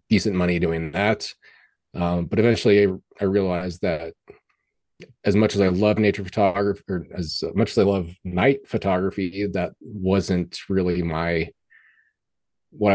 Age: 30-49